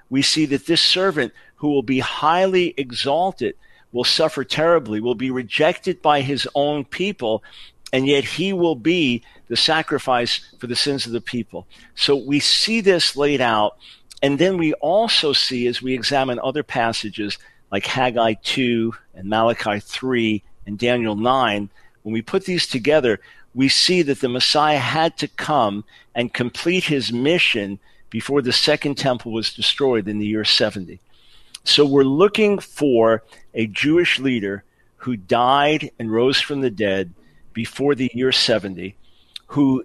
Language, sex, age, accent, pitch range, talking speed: English, male, 50-69, American, 115-150 Hz, 155 wpm